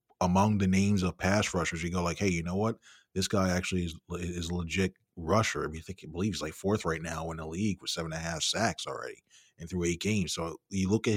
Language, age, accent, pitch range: English, 30-49, American, 85-105 Hz